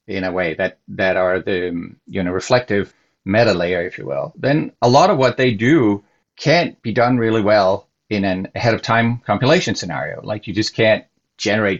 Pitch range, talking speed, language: 100-125 Hz, 180 wpm, English